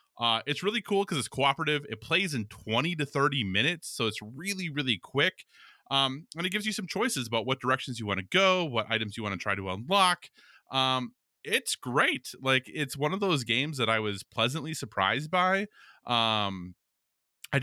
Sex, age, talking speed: male, 20-39, 195 wpm